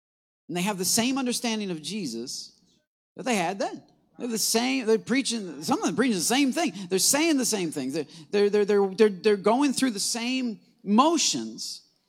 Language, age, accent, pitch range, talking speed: English, 40-59, American, 190-250 Hz, 195 wpm